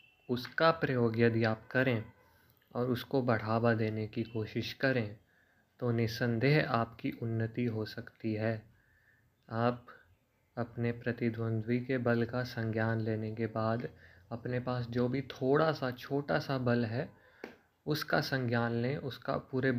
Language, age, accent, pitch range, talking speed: Hindi, 20-39, native, 115-130 Hz, 135 wpm